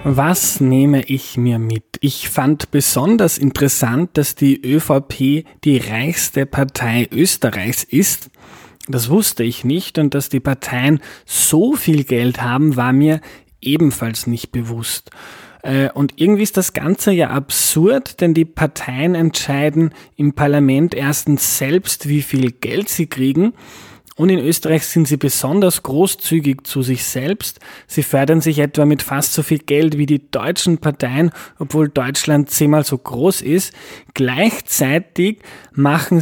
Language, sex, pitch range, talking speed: German, male, 135-160 Hz, 140 wpm